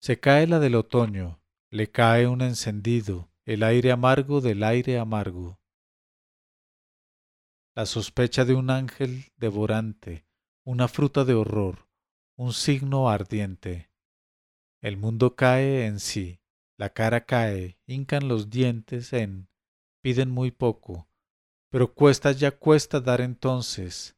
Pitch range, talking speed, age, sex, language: 100-125 Hz, 120 wpm, 40-59, male, English